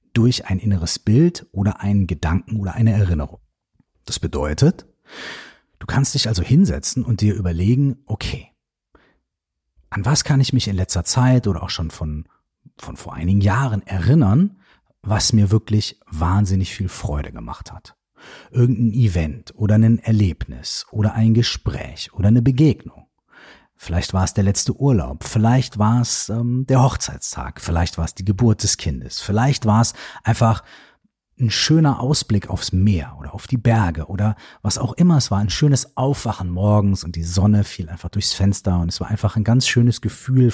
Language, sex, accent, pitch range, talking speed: German, male, German, 95-125 Hz, 170 wpm